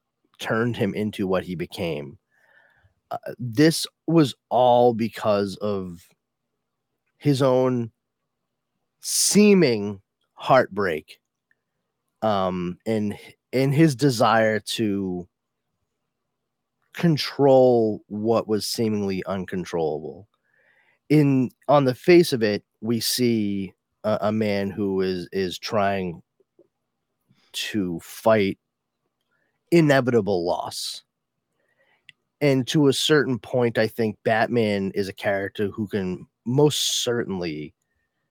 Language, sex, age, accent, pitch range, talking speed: English, male, 30-49, American, 100-145 Hz, 95 wpm